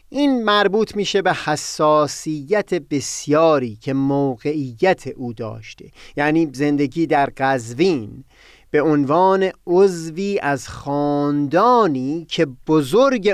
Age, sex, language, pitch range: 30-49, male, Persian, 135-180 Hz